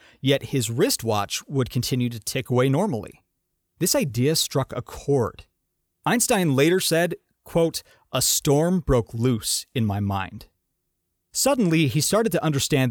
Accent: American